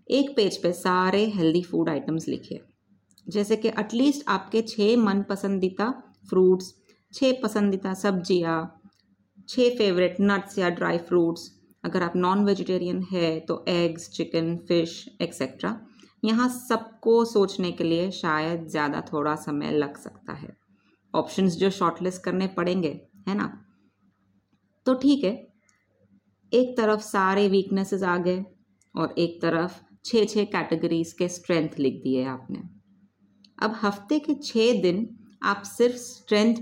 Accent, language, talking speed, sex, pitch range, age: Indian, English, 115 wpm, female, 175-220 Hz, 30-49